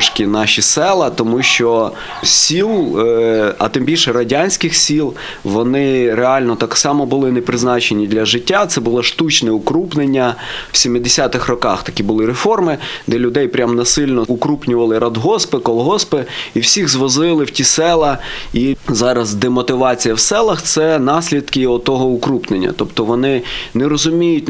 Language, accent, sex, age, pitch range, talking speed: Ukrainian, native, male, 20-39, 115-145 Hz, 135 wpm